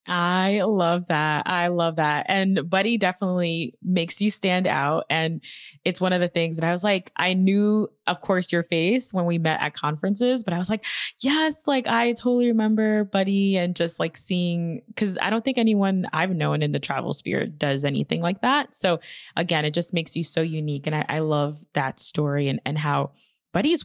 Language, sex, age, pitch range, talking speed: English, female, 20-39, 165-220 Hz, 205 wpm